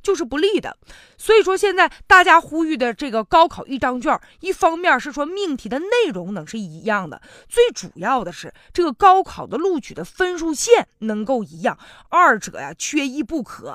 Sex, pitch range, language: female, 220-315 Hz, Chinese